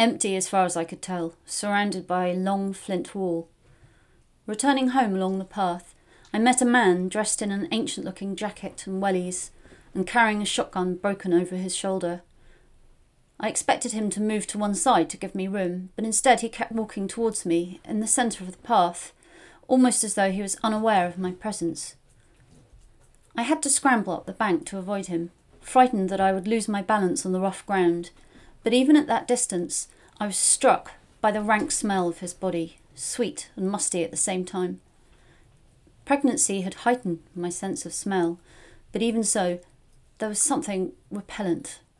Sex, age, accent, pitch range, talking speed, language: female, 30-49, British, 180-220 Hz, 185 wpm, English